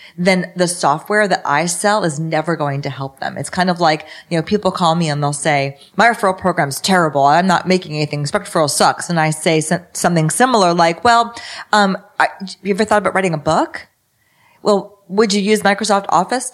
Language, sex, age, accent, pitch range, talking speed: English, female, 30-49, American, 160-195 Hz, 205 wpm